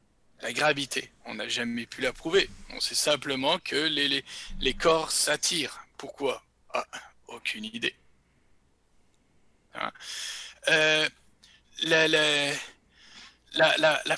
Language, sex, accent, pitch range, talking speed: French, male, French, 140-185 Hz, 95 wpm